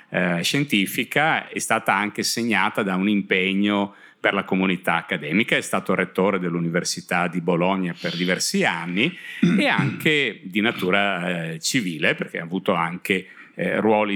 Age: 50-69